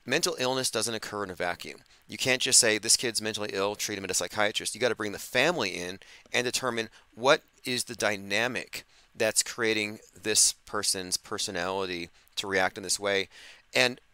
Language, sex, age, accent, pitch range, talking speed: English, male, 30-49, American, 100-125 Hz, 185 wpm